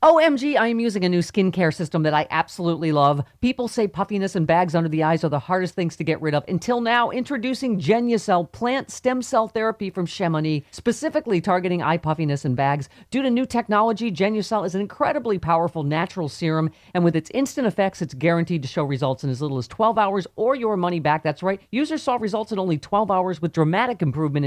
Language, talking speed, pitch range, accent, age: English, 215 wpm, 165-230 Hz, American, 40-59